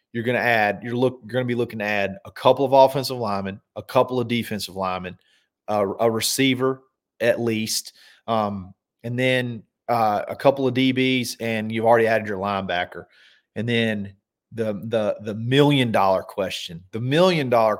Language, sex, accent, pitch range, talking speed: English, male, American, 105-120 Hz, 170 wpm